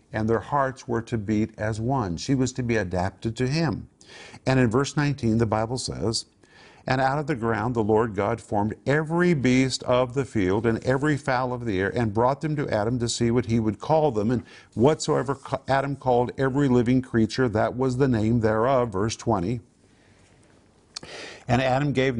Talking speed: 190 wpm